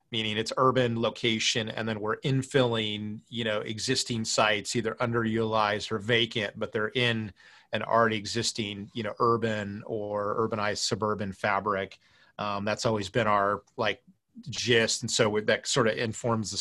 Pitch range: 105-120 Hz